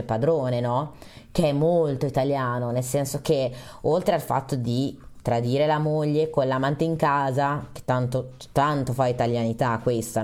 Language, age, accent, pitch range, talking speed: Italian, 20-39, native, 125-155 Hz, 150 wpm